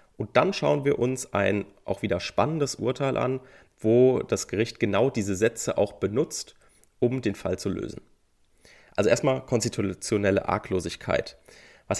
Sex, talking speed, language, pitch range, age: male, 145 wpm, German, 100-135 Hz, 30-49